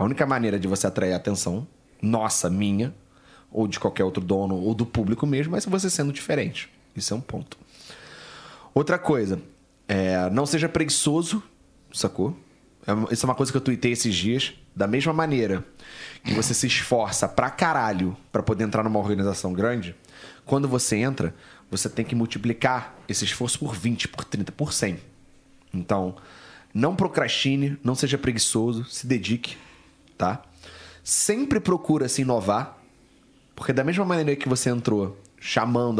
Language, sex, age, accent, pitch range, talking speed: Portuguese, male, 30-49, Brazilian, 105-135 Hz, 155 wpm